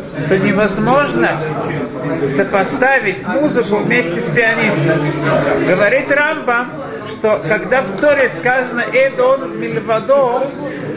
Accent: native